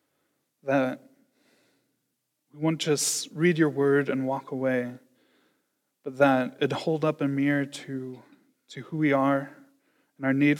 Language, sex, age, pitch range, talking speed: English, male, 20-39, 135-155 Hz, 140 wpm